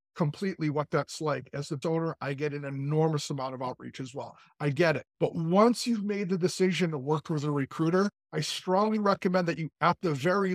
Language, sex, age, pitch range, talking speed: English, male, 50-69, 150-200 Hz, 215 wpm